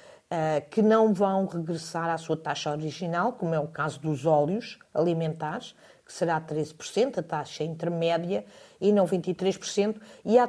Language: Portuguese